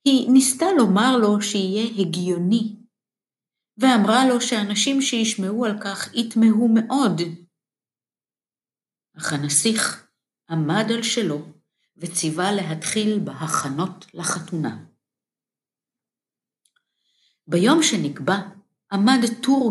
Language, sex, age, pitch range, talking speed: Hebrew, female, 50-69, 170-220 Hz, 80 wpm